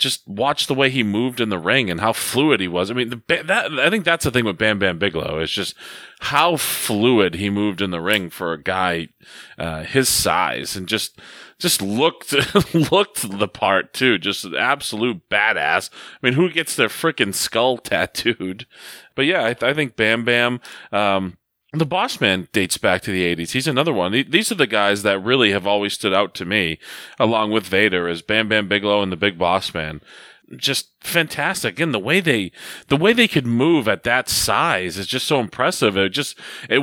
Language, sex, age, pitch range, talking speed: English, male, 30-49, 95-140 Hz, 205 wpm